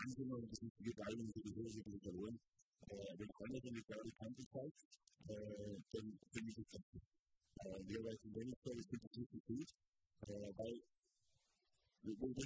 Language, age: German, 50-69